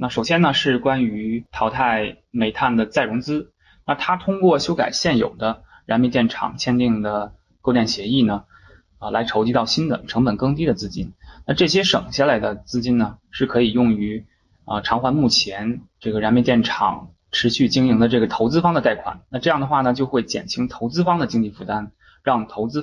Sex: male